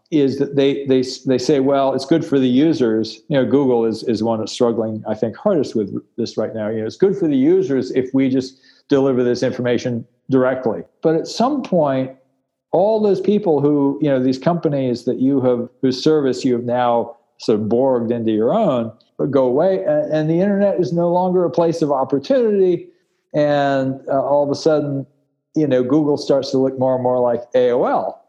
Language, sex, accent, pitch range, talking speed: English, male, American, 125-155 Hz, 205 wpm